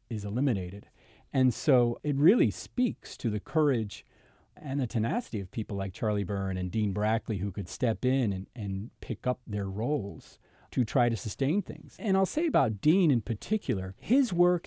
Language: English